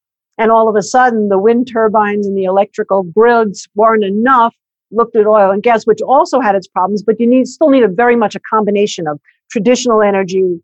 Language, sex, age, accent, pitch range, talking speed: English, female, 50-69, American, 190-245 Hz, 210 wpm